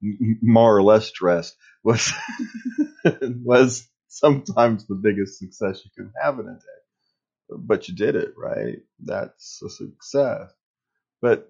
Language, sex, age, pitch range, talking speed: English, male, 30-49, 95-125 Hz, 130 wpm